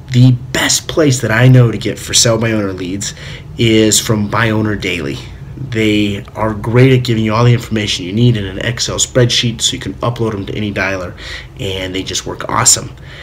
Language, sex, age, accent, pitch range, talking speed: English, male, 30-49, American, 105-125 Hz, 210 wpm